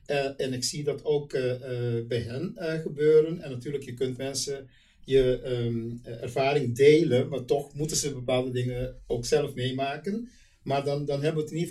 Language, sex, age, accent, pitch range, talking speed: Dutch, male, 50-69, Dutch, 125-150 Hz, 195 wpm